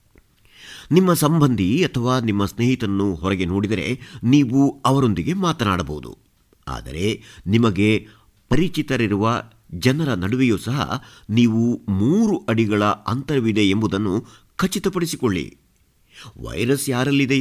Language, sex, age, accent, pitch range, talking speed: Kannada, male, 50-69, native, 100-125 Hz, 85 wpm